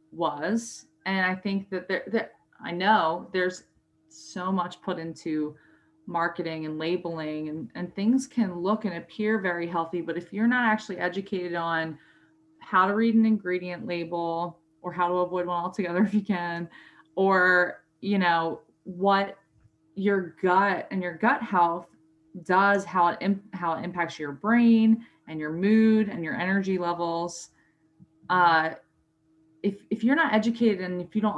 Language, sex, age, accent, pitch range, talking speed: English, female, 20-39, American, 165-210 Hz, 160 wpm